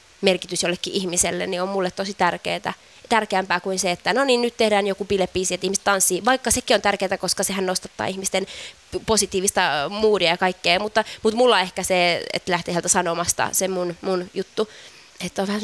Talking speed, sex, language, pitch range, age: 185 wpm, female, Finnish, 185-250 Hz, 20-39